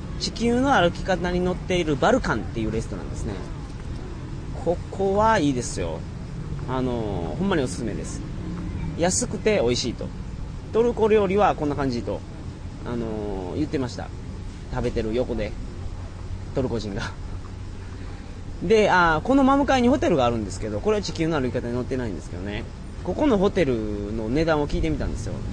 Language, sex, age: Japanese, male, 30-49